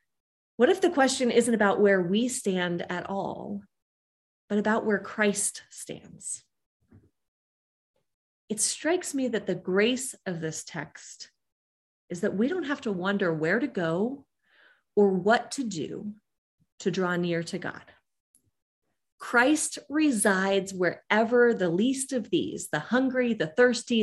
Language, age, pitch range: English, 30-49, 180-250 Hz